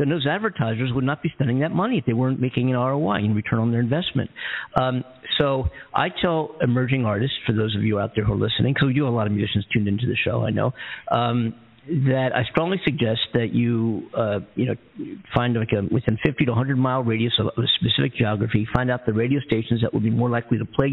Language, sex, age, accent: English, male, 50-69, American